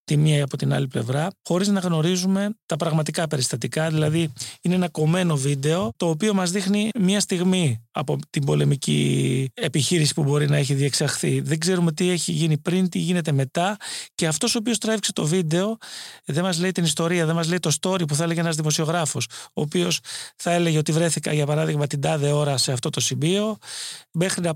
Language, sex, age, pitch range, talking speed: Greek, male, 30-49, 155-190 Hz, 200 wpm